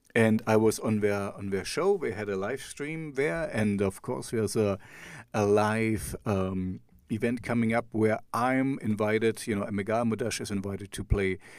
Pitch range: 105-140 Hz